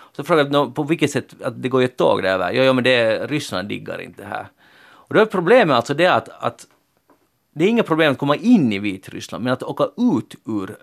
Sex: male